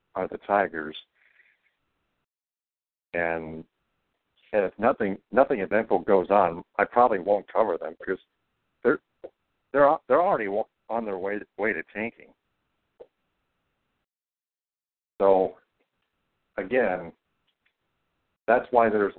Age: 60-79